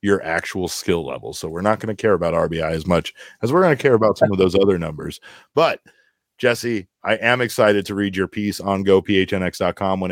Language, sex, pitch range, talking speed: English, male, 100-115 Hz, 220 wpm